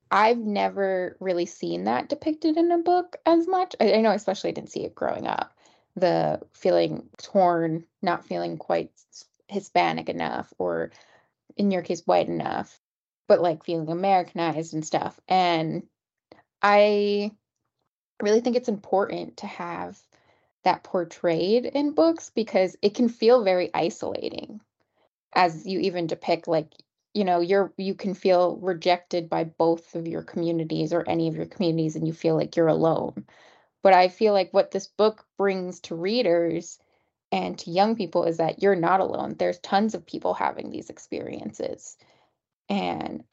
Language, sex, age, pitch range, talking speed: English, female, 10-29, 170-210 Hz, 160 wpm